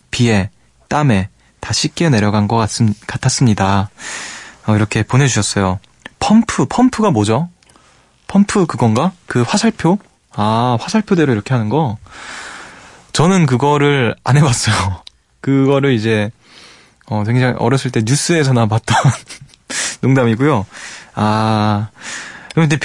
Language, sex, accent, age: Korean, male, native, 20-39